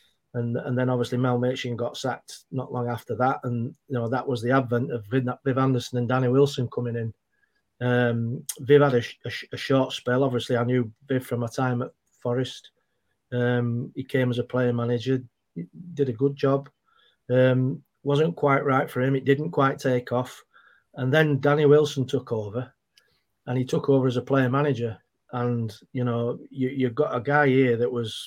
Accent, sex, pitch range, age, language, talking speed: British, male, 120-140 Hz, 30-49, English, 195 wpm